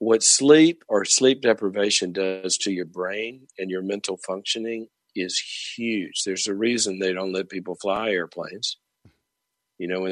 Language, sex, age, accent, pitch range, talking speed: English, male, 50-69, American, 90-100 Hz, 160 wpm